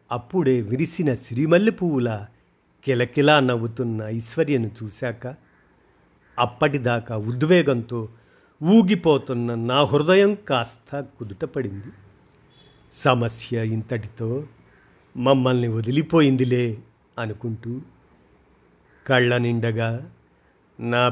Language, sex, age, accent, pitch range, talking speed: Telugu, male, 50-69, native, 115-135 Hz, 65 wpm